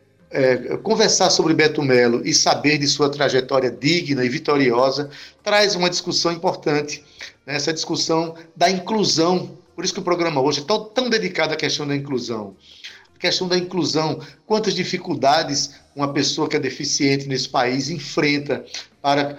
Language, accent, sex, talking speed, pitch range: Portuguese, Brazilian, male, 155 wpm, 140-175 Hz